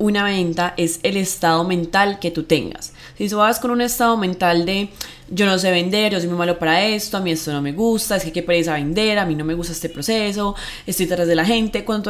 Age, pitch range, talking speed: 20-39, 170-220 Hz, 265 wpm